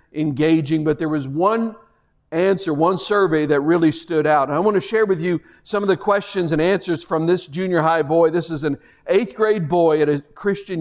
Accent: American